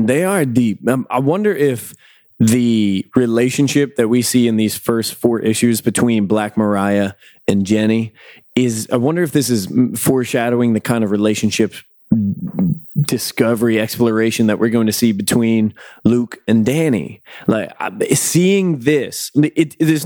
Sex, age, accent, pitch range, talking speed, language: male, 20-39, American, 110-135 Hz, 145 wpm, English